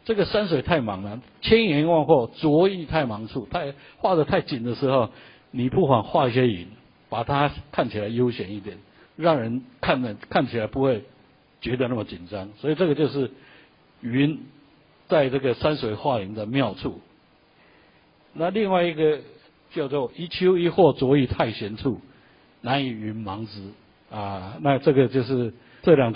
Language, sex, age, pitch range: Chinese, male, 60-79, 115-155 Hz